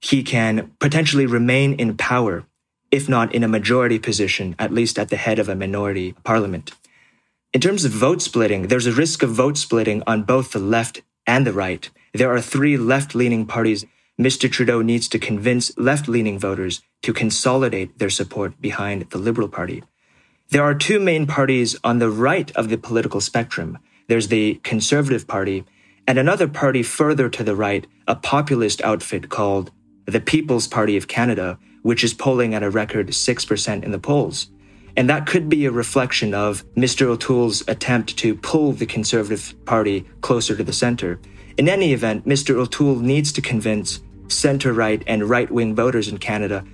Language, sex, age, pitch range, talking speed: English, male, 30-49, 105-130 Hz, 170 wpm